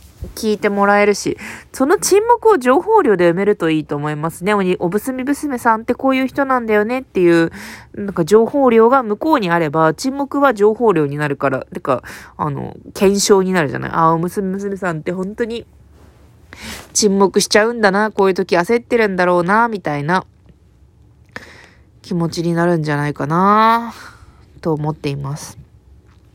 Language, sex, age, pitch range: Japanese, female, 20-39, 170-220 Hz